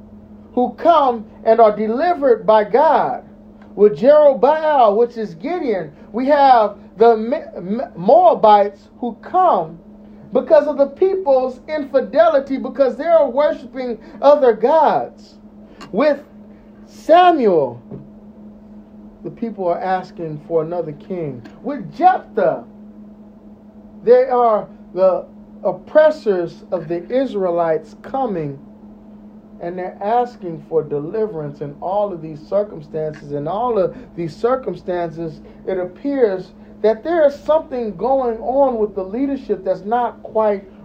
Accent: American